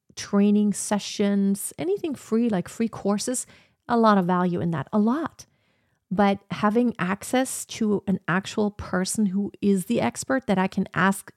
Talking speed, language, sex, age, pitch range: 160 wpm, English, female, 40-59, 185-215 Hz